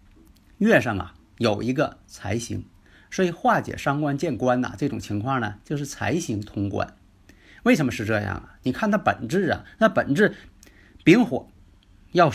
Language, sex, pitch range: Chinese, male, 100-145 Hz